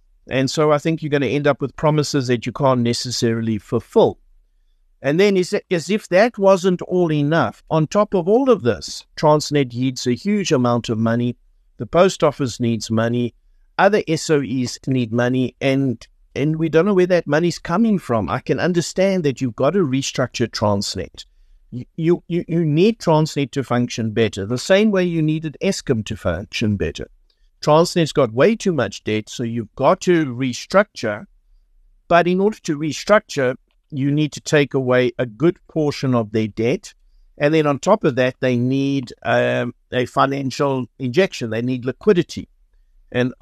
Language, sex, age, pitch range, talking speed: English, male, 60-79, 120-160 Hz, 175 wpm